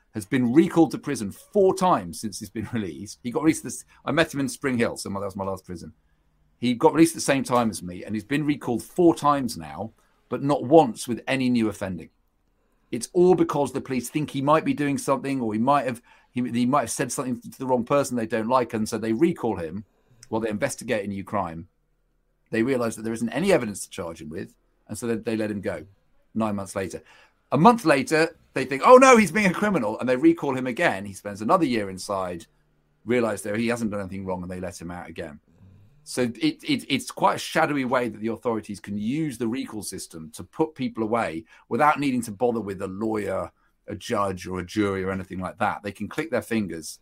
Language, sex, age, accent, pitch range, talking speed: English, male, 40-59, British, 100-140 Hz, 230 wpm